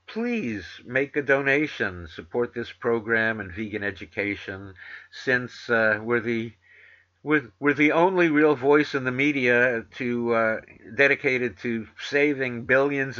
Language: English